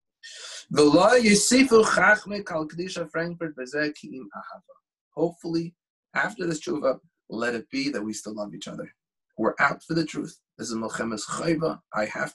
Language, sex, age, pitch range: English, male, 30-49, 150-220 Hz